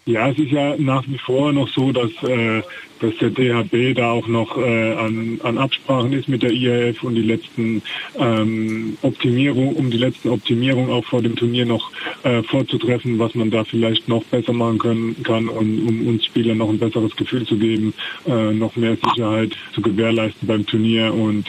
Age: 20-39